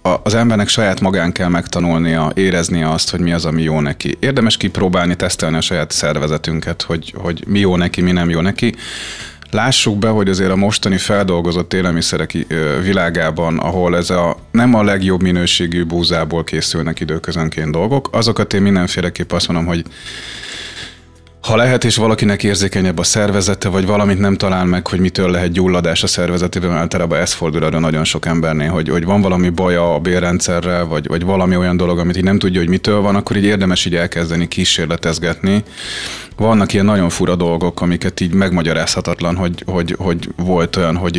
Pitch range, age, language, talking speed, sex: 85-100 Hz, 30-49, Hungarian, 175 wpm, male